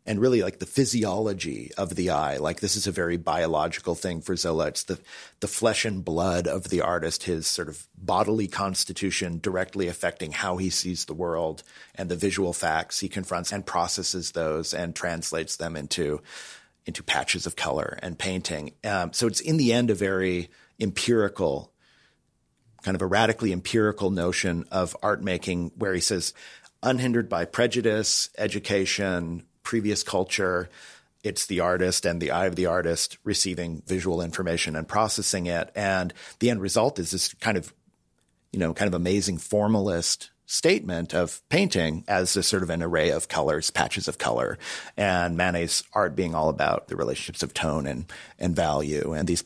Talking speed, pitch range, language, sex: 170 wpm, 85-105 Hz, English, male